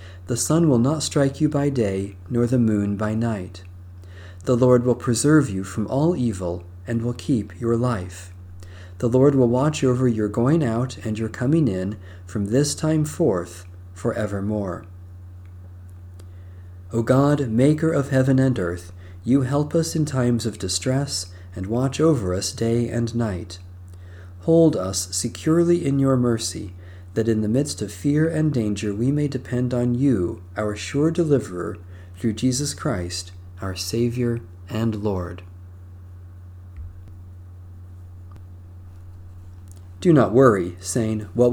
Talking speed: 140 wpm